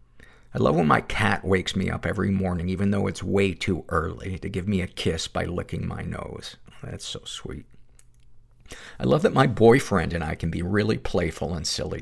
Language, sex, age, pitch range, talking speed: English, male, 50-69, 85-100 Hz, 205 wpm